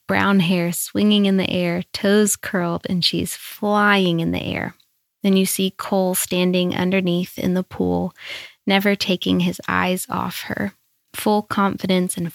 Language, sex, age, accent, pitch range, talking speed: English, female, 20-39, American, 175-200 Hz, 155 wpm